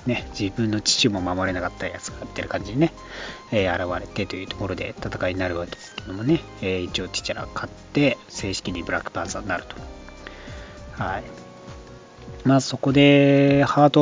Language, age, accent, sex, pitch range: Japanese, 40-59, native, male, 100-140 Hz